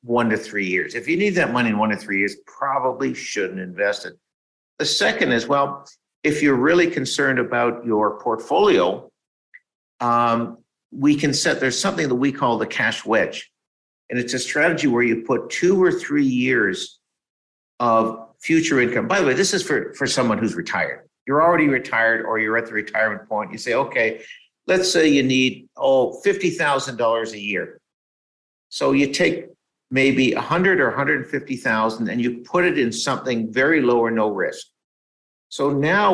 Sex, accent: male, American